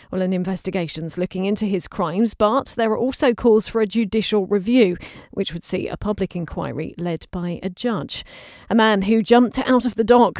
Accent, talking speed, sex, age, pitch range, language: British, 195 wpm, female, 40-59, 190-235 Hz, English